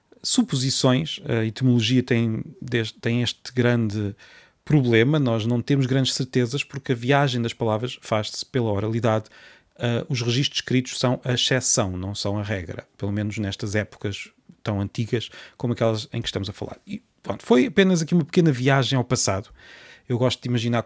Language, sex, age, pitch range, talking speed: Portuguese, male, 30-49, 110-135 Hz, 165 wpm